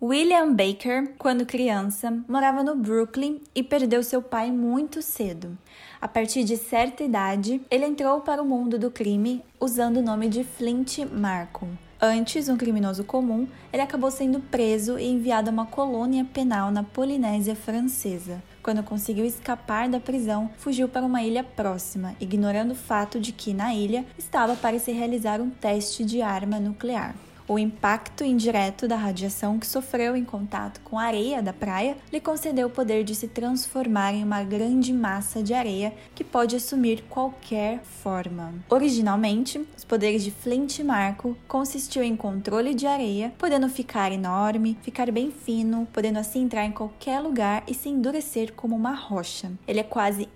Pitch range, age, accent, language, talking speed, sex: 210-255 Hz, 10-29, Brazilian, Portuguese, 165 wpm, female